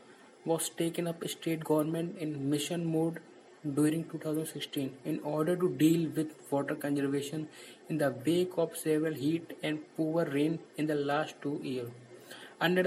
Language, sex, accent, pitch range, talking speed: English, male, Indian, 150-170 Hz, 150 wpm